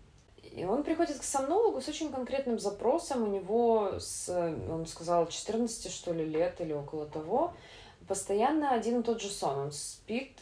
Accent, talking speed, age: native, 150 wpm, 20-39